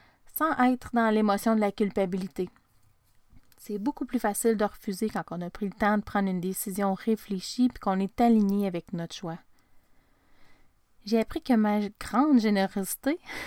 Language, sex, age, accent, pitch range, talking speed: French, female, 30-49, Canadian, 195-245 Hz, 165 wpm